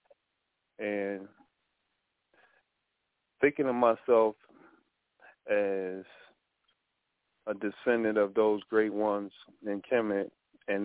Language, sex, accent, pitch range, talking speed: English, male, American, 95-110 Hz, 75 wpm